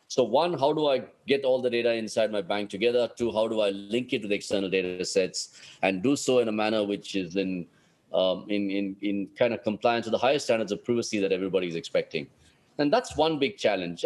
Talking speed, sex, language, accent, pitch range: 230 wpm, male, English, Indian, 100-130 Hz